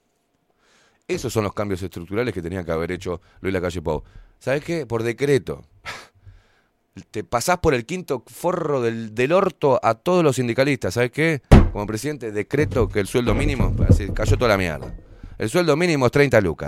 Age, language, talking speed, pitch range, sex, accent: 30-49, Spanish, 175 wpm, 95-160 Hz, male, Argentinian